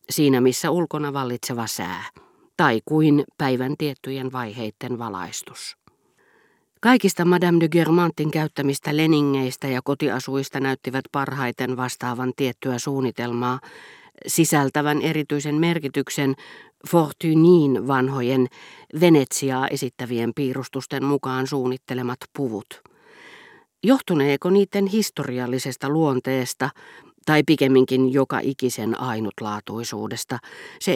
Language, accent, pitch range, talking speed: Finnish, native, 125-155 Hz, 85 wpm